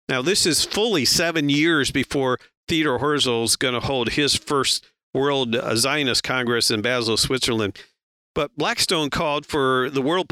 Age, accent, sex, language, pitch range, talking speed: 50-69, American, male, English, 130-155 Hz, 155 wpm